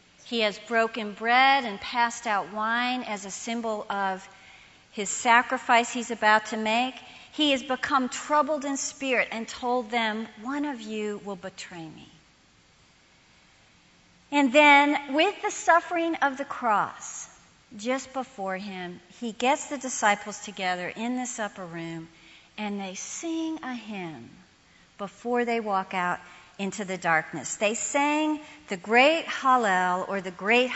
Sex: female